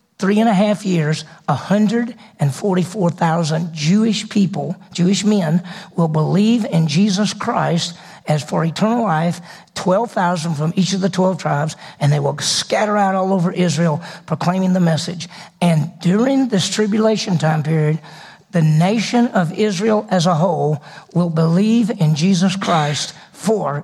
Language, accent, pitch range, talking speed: English, American, 170-210 Hz, 155 wpm